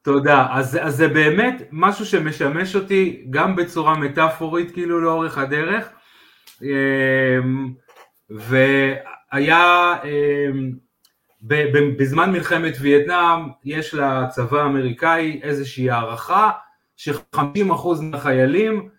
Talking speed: 85 wpm